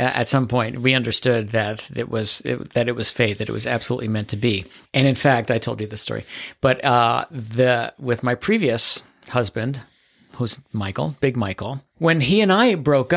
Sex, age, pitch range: male, 50-69, 115-140 Hz